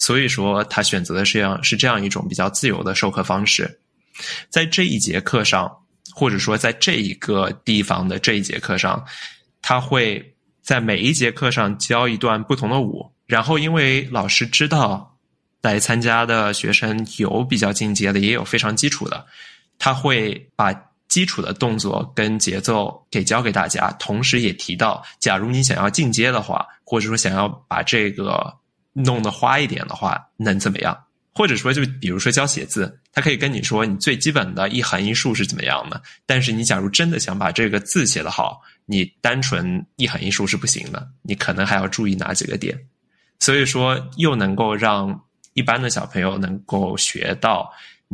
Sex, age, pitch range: male, 20-39, 100-130 Hz